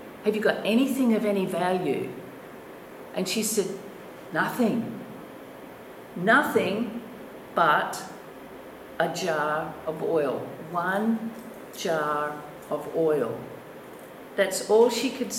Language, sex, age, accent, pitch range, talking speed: English, female, 50-69, Australian, 190-235 Hz, 100 wpm